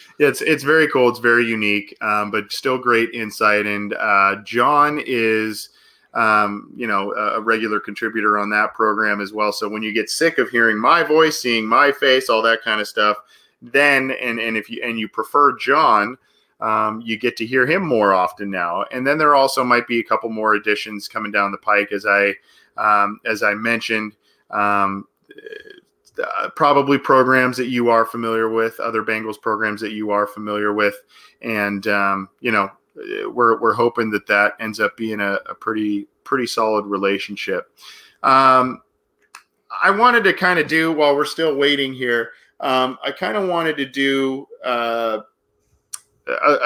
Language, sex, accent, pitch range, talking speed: English, male, American, 105-130 Hz, 180 wpm